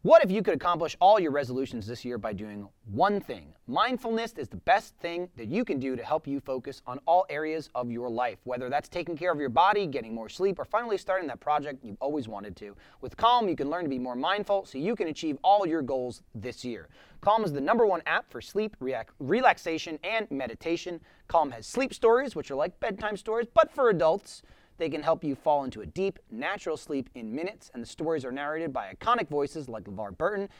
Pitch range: 135-210 Hz